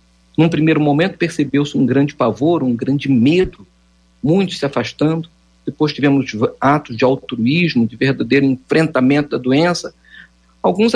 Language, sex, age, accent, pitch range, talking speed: Portuguese, male, 50-69, Brazilian, 100-165 Hz, 130 wpm